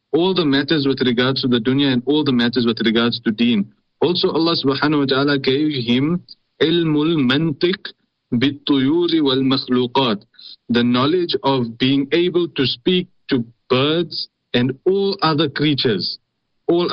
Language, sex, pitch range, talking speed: English, male, 120-155 Hz, 150 wpm